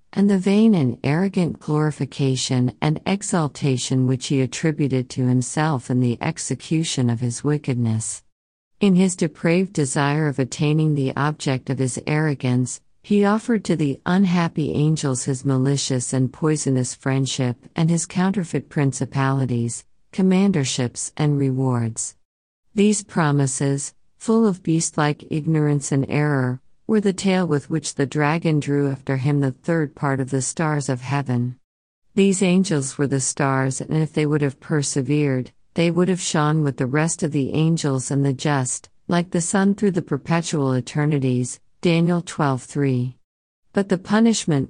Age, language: 50-69, English